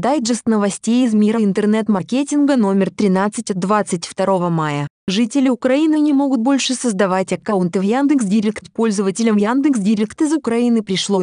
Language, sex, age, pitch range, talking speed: Russian, female, 20-39, 185-230 Hz, 130 wpm